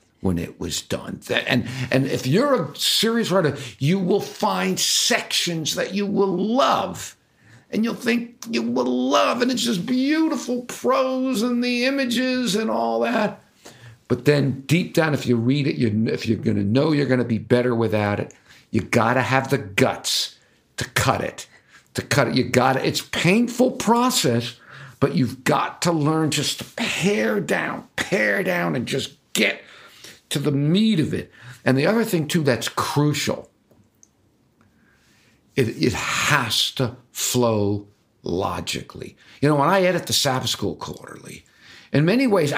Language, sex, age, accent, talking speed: English, male, 50-69, American, 160 wpm